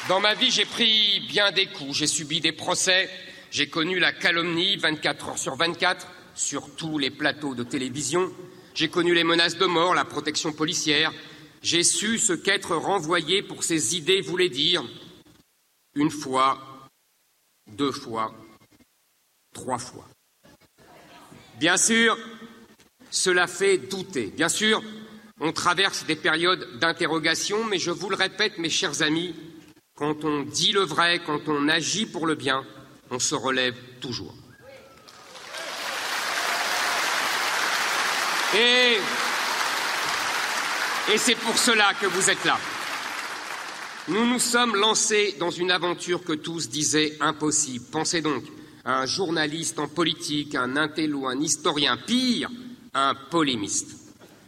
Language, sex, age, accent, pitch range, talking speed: French, male, 50-69, French, 150-190 Hz, 130 wpm